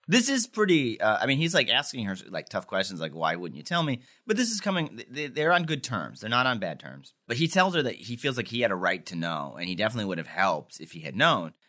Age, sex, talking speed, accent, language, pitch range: 30-49, male, 285 wpm, American, English, 85-125 Hz